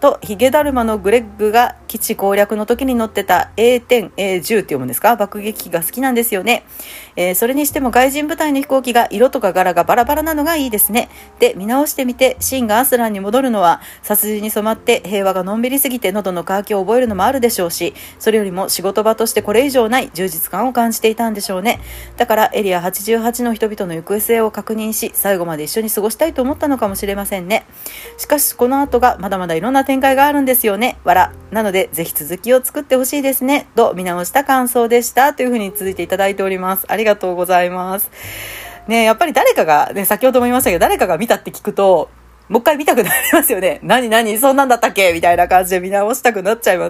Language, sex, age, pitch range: Japanese, female, 40-59, 195-260 Hz